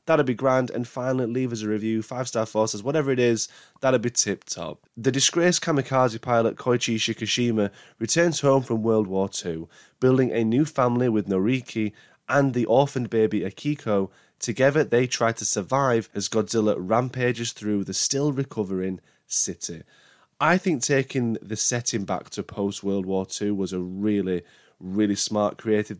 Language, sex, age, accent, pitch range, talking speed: English, male, 20-39, British, 100-125 Hz, 155 wpm